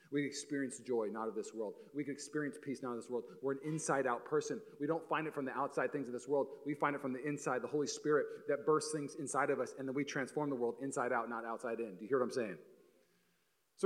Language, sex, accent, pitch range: English, male, American, 145-215 Hz